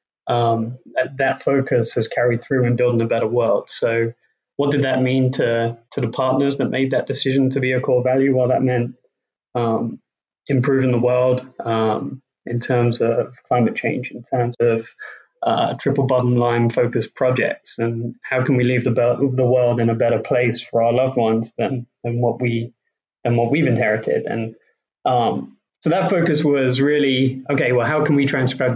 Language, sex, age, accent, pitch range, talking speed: English, male, 20-39, British, 120-135 Hz, 190 wpm